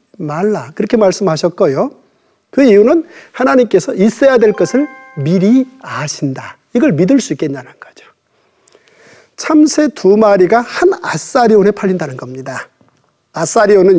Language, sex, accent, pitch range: Korean, male, native, 175-260 Hz